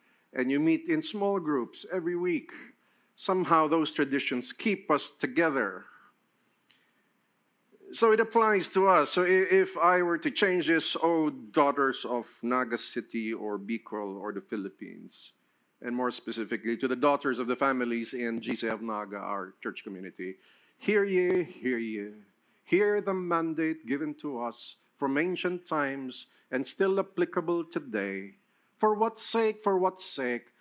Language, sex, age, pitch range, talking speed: English, male, 50-69, 125-195 Hz, 145 wpm